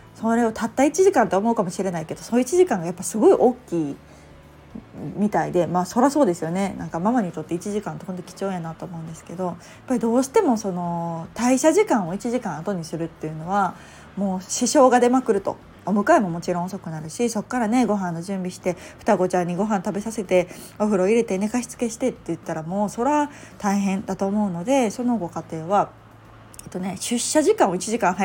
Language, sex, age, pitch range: Japanese, female, 20-39, 175-240 Hz